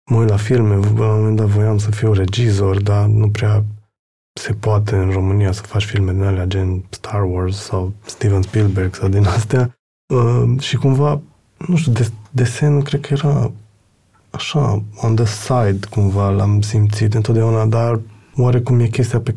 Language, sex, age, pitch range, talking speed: Romanian, male, 20-39, 105-115 Hz, 165 wpm